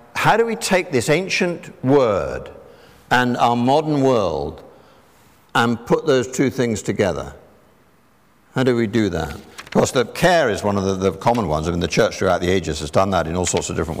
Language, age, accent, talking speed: English, 60-79, British, 205 wpm